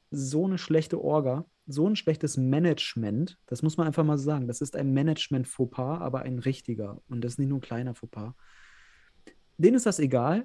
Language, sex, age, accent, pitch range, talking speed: German, male, 30-49, German, 130-160 Hz, 200 wpm